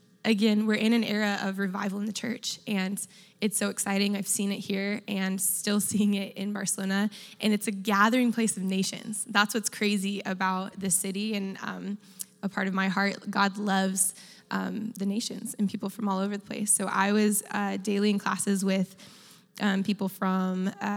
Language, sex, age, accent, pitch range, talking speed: English, female, 20-39, American, 195-220 Hz, 190 wpm